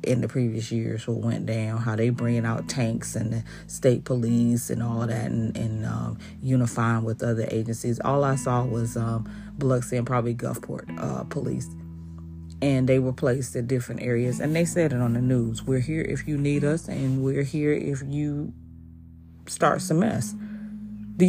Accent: American